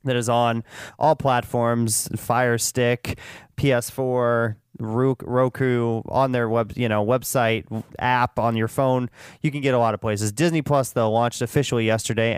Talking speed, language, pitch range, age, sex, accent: 155 wpm, English, 115-140 Hz, 30-49, male, American